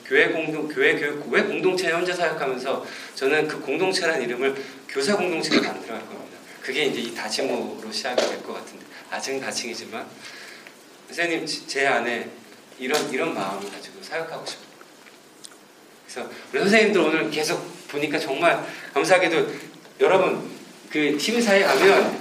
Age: 40-59